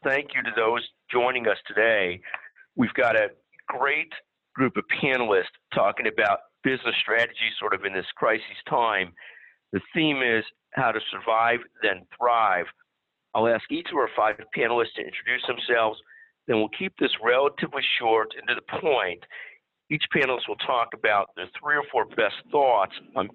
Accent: American